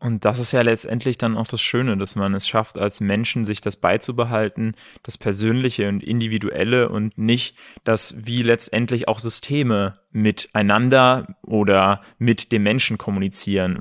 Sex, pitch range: male, 110-135 Hz